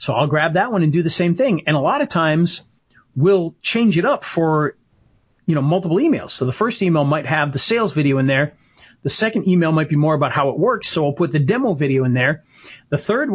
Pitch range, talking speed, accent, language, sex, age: 140-185 Hz, 240 wpm, American, English, male, 40-59